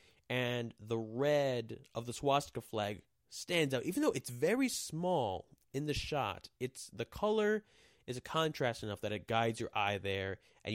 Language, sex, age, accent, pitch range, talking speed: English, male, 20-39, American, 105-145 Hz, 175 wpm